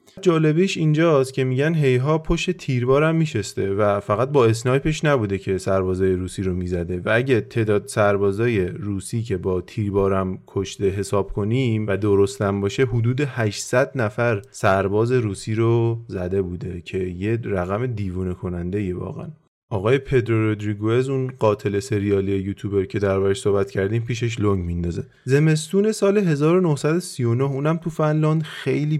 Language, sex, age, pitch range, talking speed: Persian, male, 30-49, 100-135 Hz, 140 wpm